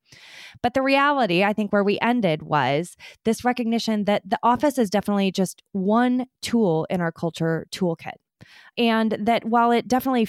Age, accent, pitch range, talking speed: 20-39, American, 180-225 Hz, 165 wpm